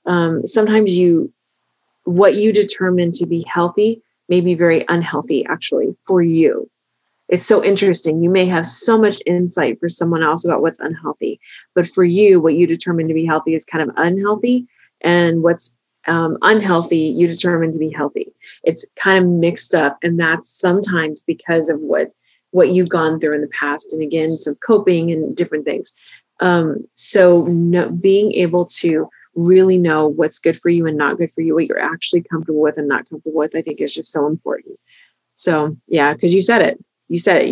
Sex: female